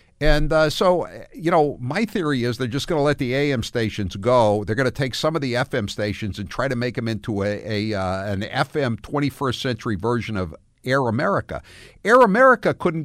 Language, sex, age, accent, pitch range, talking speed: English, male, 60-79, American, 110-180 Hz, 210 wpm